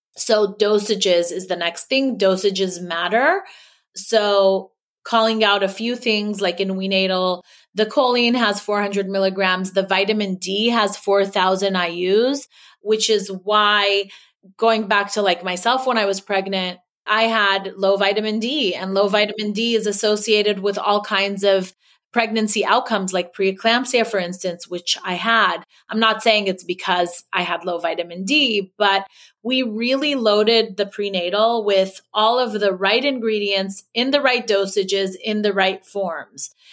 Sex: female